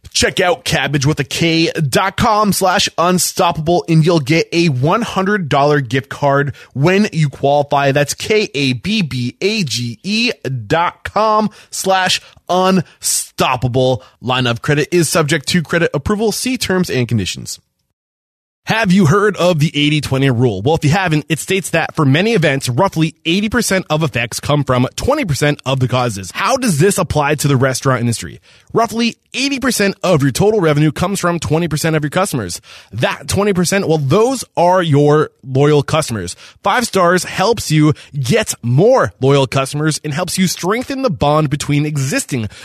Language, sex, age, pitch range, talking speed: English, male, 20-39, 135-185 Hz, 155 wpm